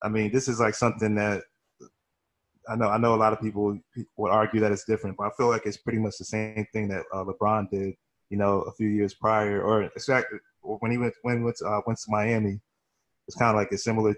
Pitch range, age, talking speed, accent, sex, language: 100-110 Hz, 20-39, 260 wpm, American, male, English